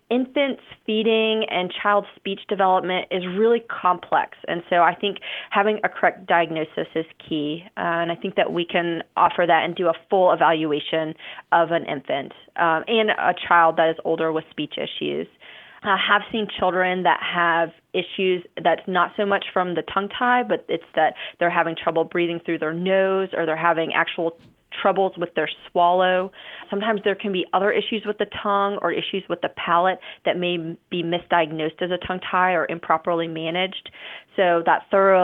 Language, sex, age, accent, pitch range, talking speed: English, female, 20-39, American, 165-200 Hz, 180 wpm